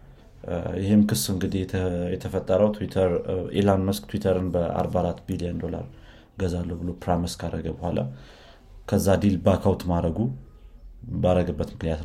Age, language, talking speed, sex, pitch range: 30-49, Amharic, 110 wpm, male, 80-100 Hz